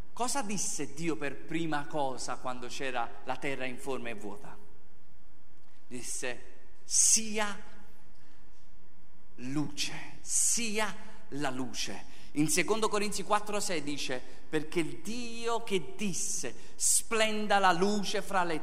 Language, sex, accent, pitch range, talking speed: Italian, male, native, 140-225 Hz, 115 wpm